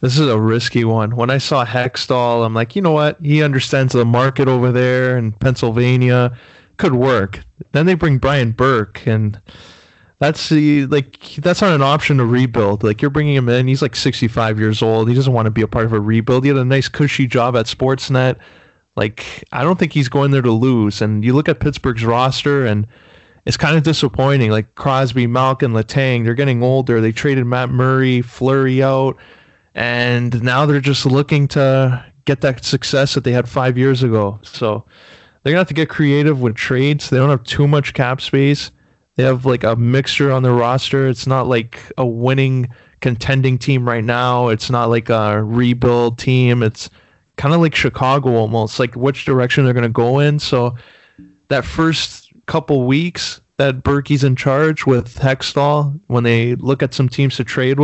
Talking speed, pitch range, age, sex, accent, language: 195 wpm, 120-140 Hz, 20-39, male, American, English